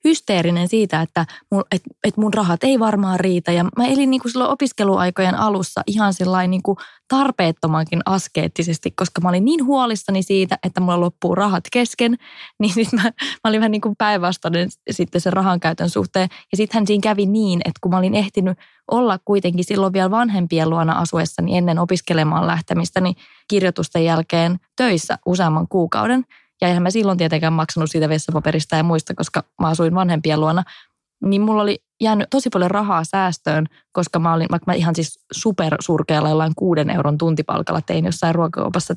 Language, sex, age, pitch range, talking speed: English, female, 20-39, 170-215 Hz, 160 wpm